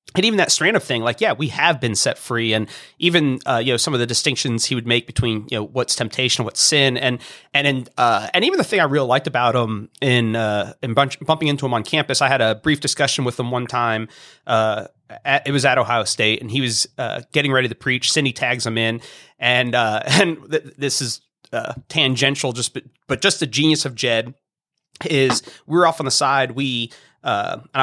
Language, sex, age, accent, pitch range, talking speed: English, male, 30-49, American, 125-165 Hz, 230 wpm